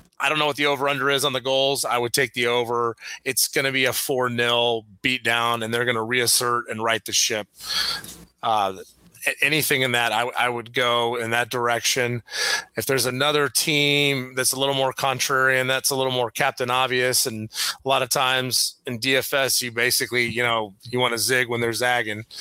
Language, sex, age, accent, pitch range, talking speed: English, male, 30-49, American, 120-135 Hz, 215 wpm